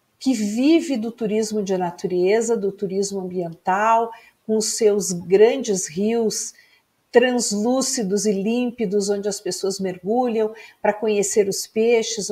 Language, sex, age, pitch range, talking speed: Portuguese, female, 50-69, 195-250 Hz, 115 wpm